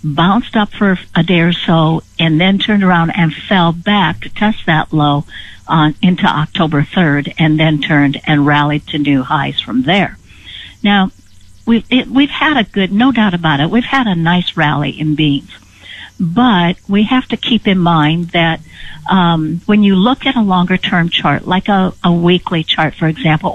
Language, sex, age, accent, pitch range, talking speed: English, female, 60-79, American, 160-210 Hz, 190 wpm